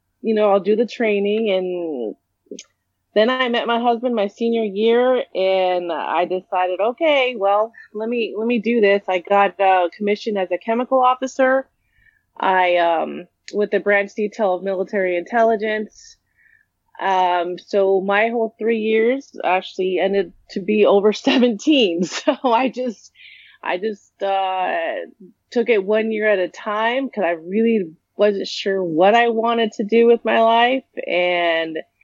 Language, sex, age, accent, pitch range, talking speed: English, female, 30-49, American, 185-235 Hz, 155 wpm